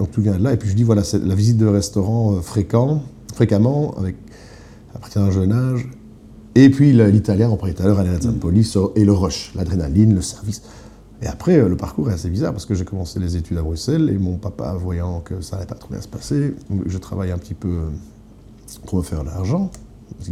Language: French